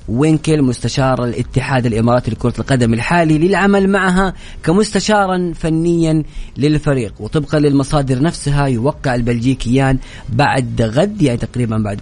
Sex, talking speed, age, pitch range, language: female, 110 wpm, 30-49, 115-150 Hz, Arabic